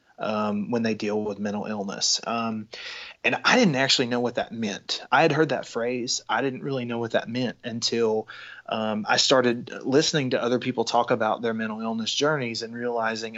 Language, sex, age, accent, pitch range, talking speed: English, male, 30-49, American, 110-140 Hz, 195 wpm